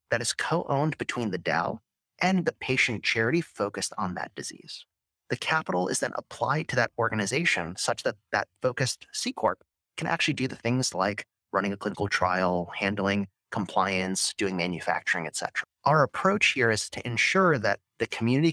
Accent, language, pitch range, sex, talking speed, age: American, English, 100-130 Hz, male, 170 wpm, 30-49